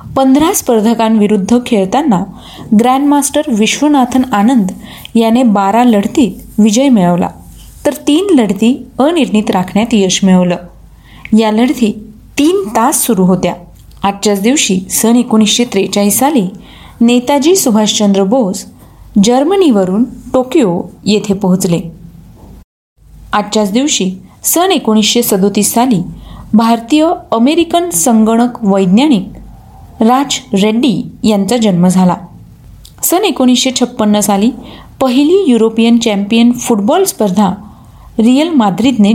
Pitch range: 205-260 Hz